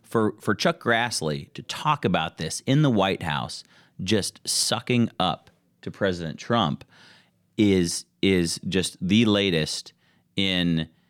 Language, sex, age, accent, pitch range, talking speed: English, male, 30-49, American, 80-100 Hz, 130 wpm